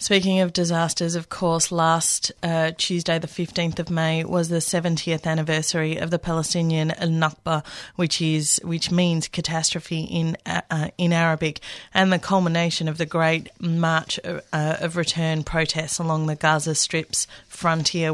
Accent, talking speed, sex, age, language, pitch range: Australian, 150 wpm, female, 30-49, English, 160-175 Hz